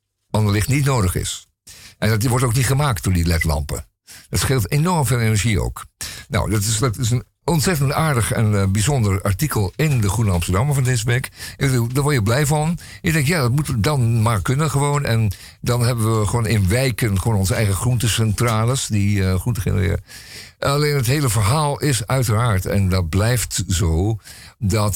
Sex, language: male, Dutch